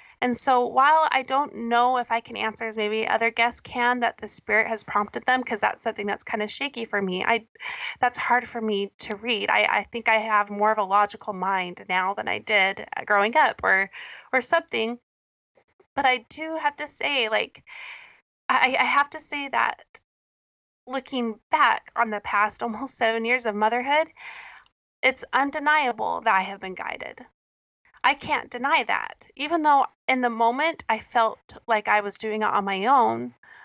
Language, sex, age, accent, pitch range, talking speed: English, female, 20-39, American, 210-255 Hz, 185 wpm